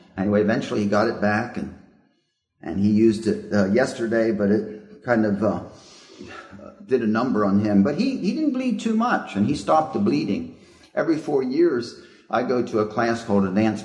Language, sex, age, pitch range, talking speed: English, male, 50-69, 100-115 Hz, 195 wpm